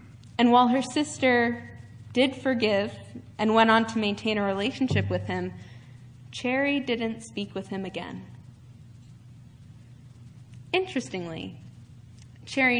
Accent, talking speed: American, 110 wpm